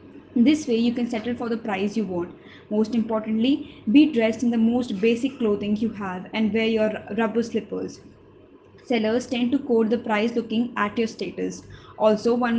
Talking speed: 180 wpm